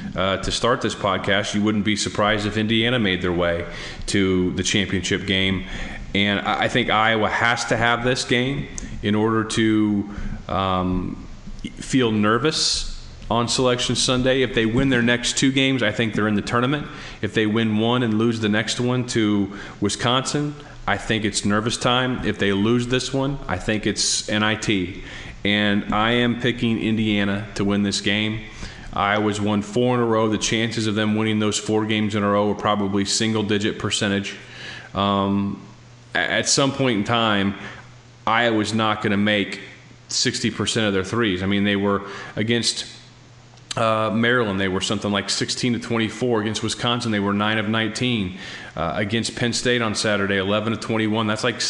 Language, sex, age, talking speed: English, male, 30-49, 175 wpm